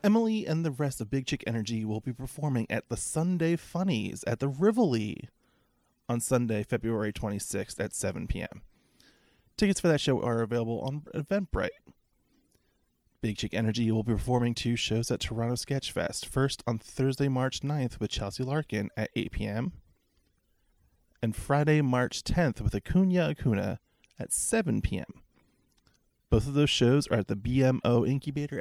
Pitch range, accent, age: 105-140 Hz, American, 20-39